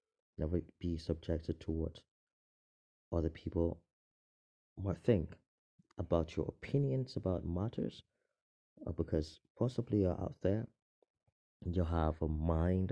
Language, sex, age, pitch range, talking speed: English, male, 30-49, 80-100 Hz, 110 wpm